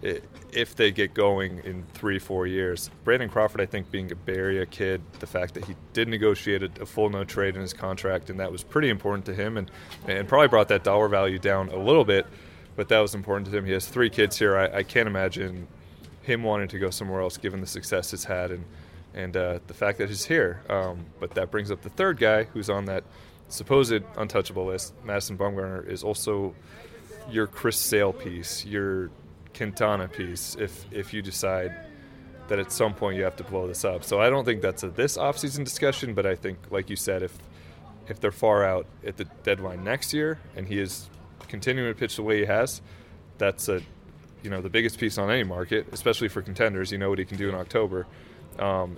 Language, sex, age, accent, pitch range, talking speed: English, male, 30-49, American, 90-105 Hz, 215 wpm